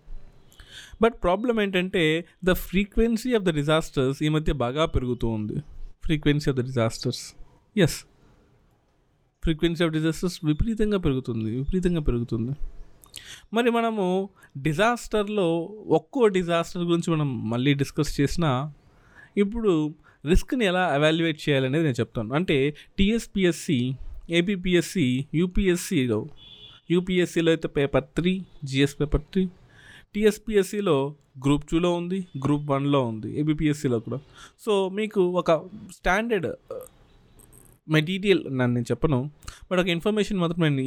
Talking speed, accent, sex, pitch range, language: 110 wpm, native, male, 135-185 Hz, Telugu